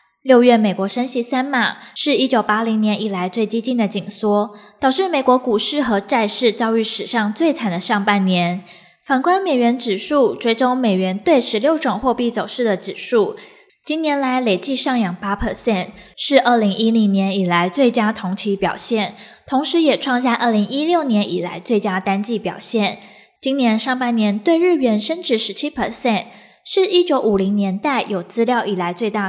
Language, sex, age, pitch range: Chinese, female, 20-39, 200-265 Hz